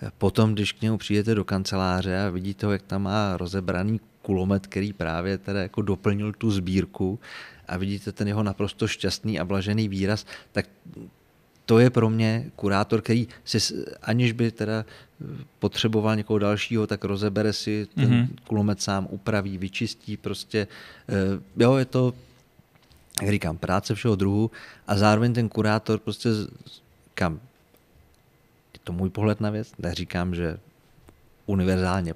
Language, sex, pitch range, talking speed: Czech, male, 90-105 Hz, 140 wpm